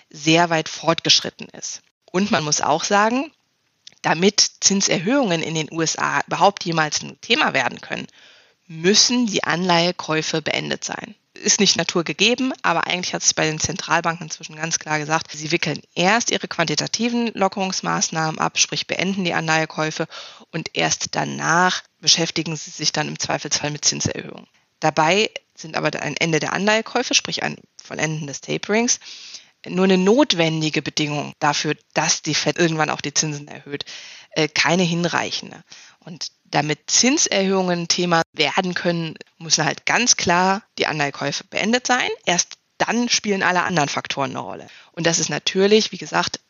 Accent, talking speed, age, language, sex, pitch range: German, 150 wpm, 20-39, German, female, 155-195 Hz